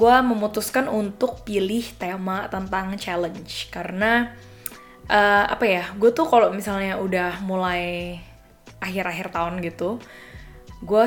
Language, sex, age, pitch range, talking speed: Indonesian, female, 20-39, 185-225 Hz, 115 wpm